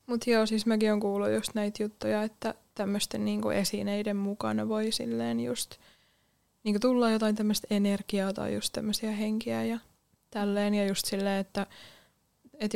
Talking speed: 155 wpm